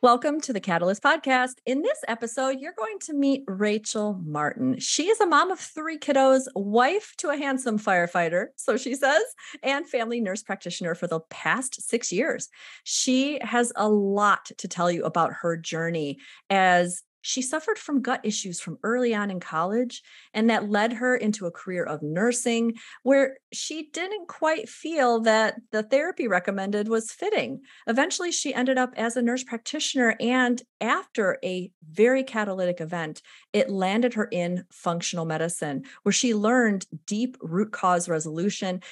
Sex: female